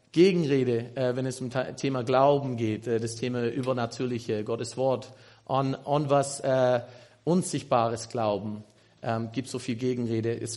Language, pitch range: German, 130-180 Hz